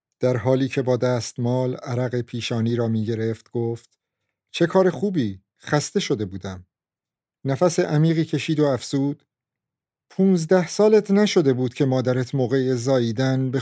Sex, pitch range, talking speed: male, 120-150 Hz, 130 wpm